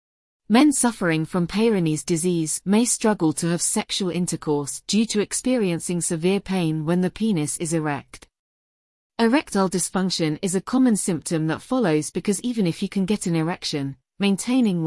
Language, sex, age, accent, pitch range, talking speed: English, female, 30-49, British, 160-215 Hz, 155 wpm